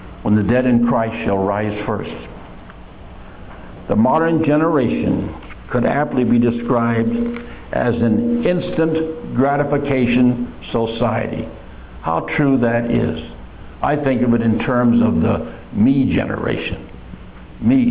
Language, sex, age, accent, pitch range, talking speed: English, male, 60-79, American, 110-140 Hz, 115 wpm